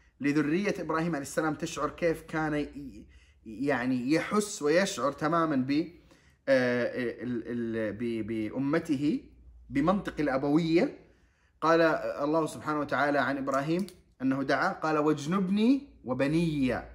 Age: 30-49